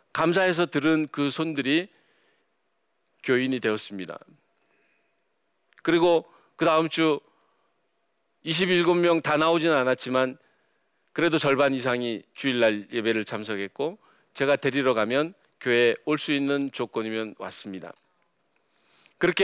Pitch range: 125-175 Hz